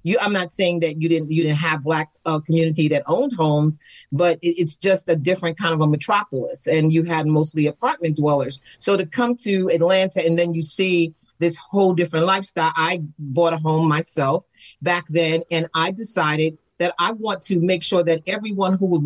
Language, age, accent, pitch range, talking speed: English, 40-59, American, 155-175 Hz, 205 wpm